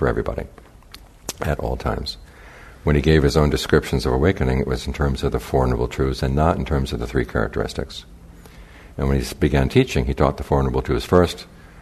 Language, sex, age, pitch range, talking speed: English, male, 60-79, 65-75 Hz, 215 wpm